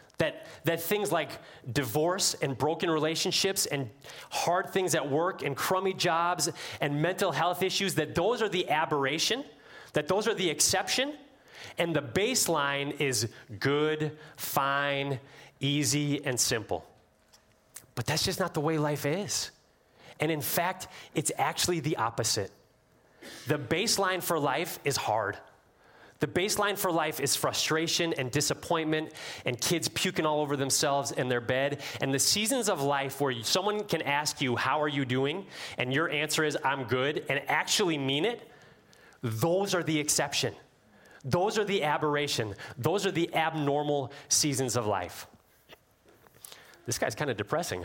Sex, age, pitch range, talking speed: male, 30-49, 135-175 Hz, 150 wpm